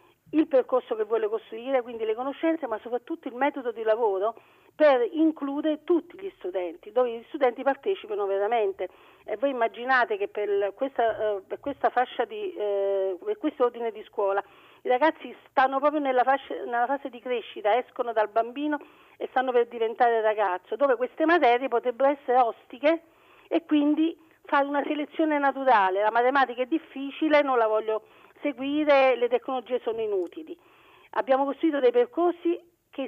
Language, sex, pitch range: Italian, female, 225-310 Hz